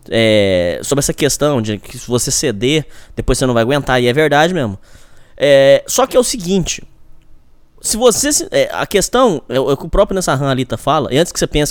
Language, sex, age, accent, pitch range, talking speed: Portuguese, male, 10-29, Brazilian, 125-195 Hz, 240 wpm